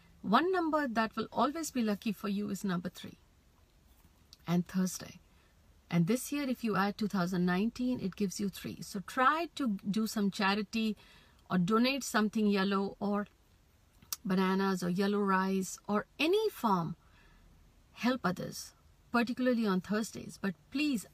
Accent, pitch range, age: native, 190-240 Hz, 50-69